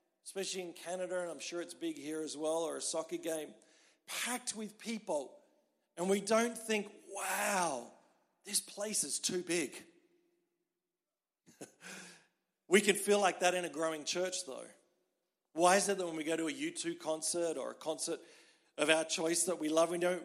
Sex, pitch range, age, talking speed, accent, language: male, 165-205 Hz, 40-59, 180 wpm, Australian, Swedish